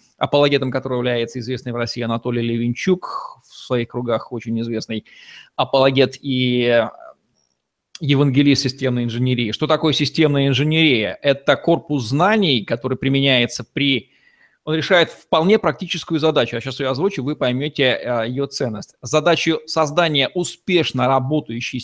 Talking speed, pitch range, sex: 125 wpm, 125-160 Hz, male